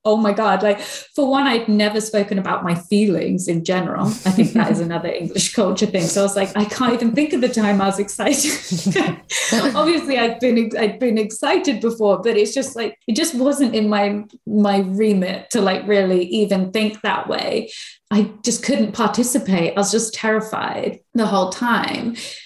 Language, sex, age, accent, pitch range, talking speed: English, female, 20-39, British, 180-220 Hz, 190 wpm